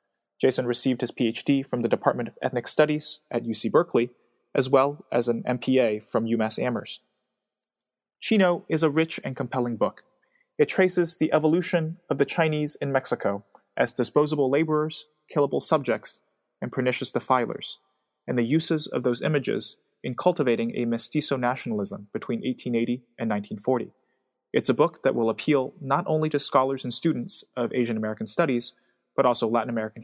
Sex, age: male, 20-39